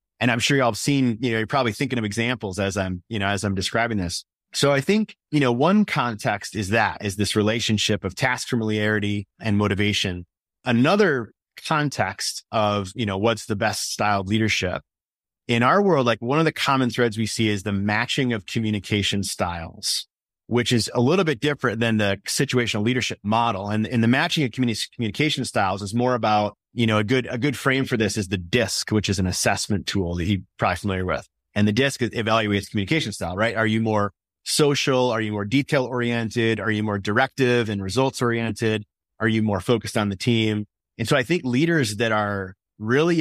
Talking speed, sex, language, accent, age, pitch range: 205 wpm, male, English, American, 30-49, 105-125 Hz